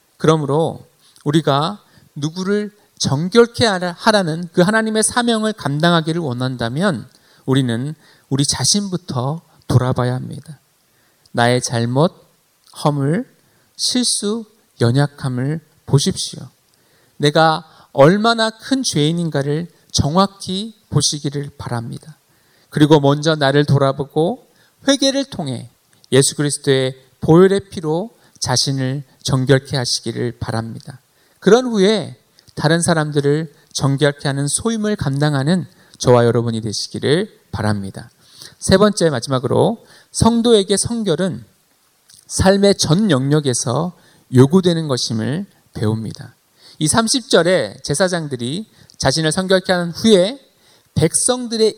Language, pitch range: Korean, 135-190 Hz